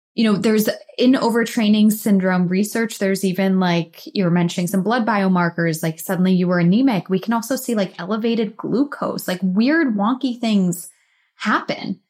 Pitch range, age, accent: 165-205 Hz, 20-39, American